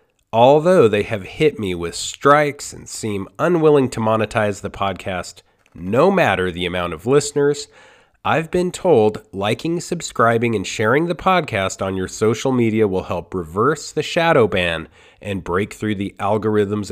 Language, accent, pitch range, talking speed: English, American, 100-145 Hz, 155 wpm